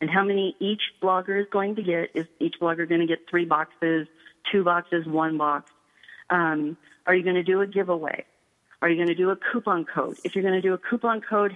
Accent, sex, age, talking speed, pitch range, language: American, female, 40-59, 235 wpm, 170-205 Hz, English